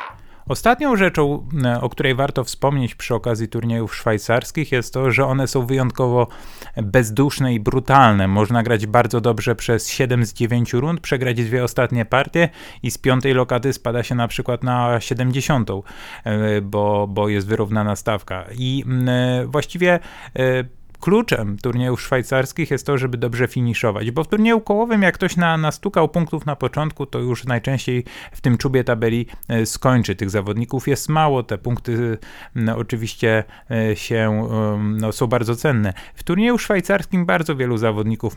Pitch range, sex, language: 110-135 Hz, male, Polish